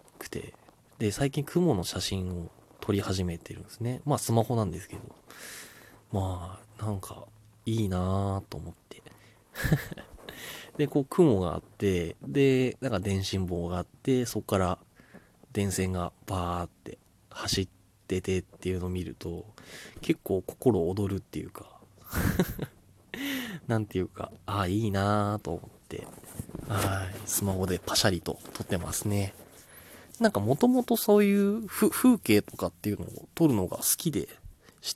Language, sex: Japanese, male